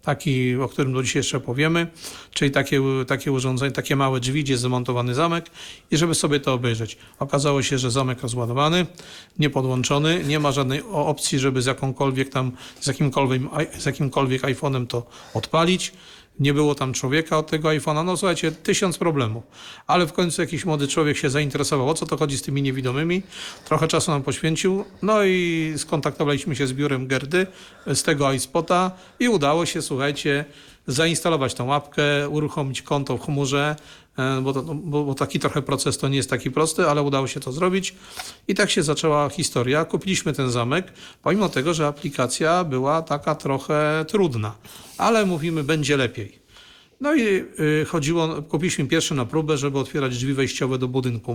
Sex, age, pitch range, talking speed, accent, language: male, 40-59, 135-160 Hz, 165 wpm, native, Polish